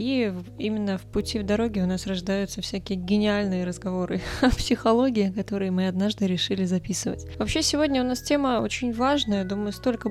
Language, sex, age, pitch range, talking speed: Russian, female, 20-39, 195-245 Hz, 165 wpm